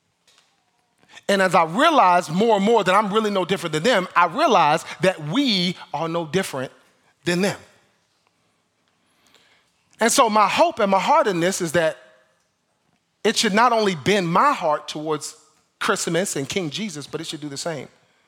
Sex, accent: male, American